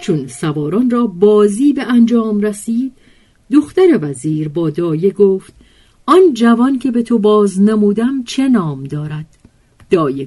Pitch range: 150-220 Hz